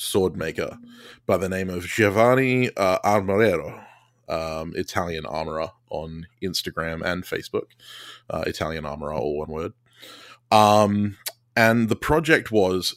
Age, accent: 20-39, Australian